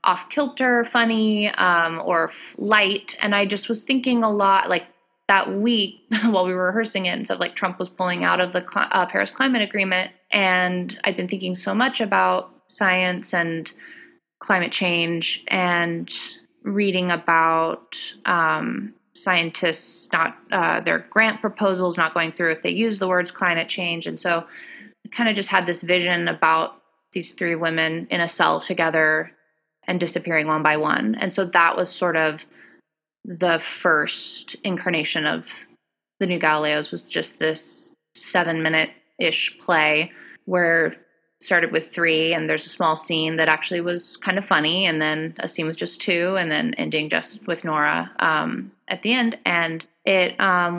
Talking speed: 170 wpm